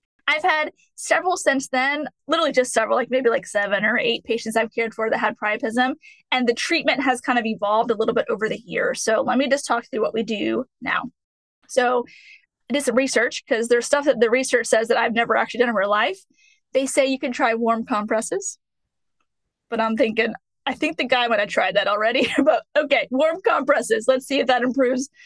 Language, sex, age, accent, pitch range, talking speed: English, female, 20-39, American, 235-280 Hz, 215 wpm